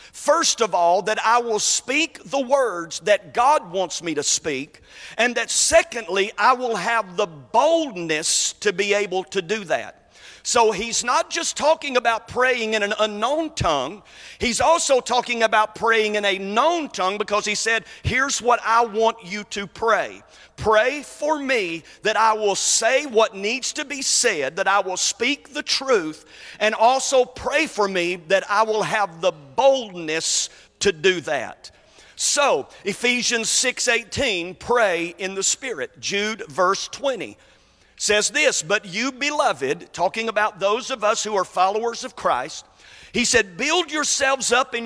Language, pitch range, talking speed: English, 200-265 Hz, 165 wpm